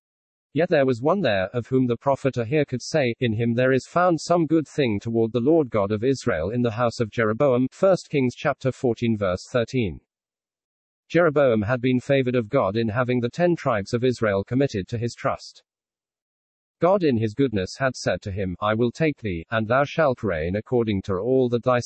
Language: English